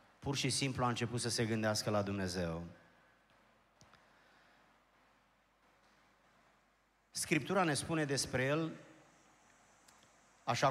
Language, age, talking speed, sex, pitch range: Romanian, 30-49, 90 wpm, male, 115-135 Hz